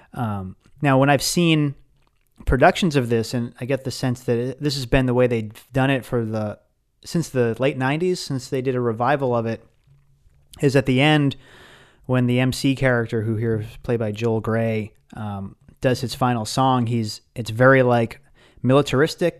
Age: 30-49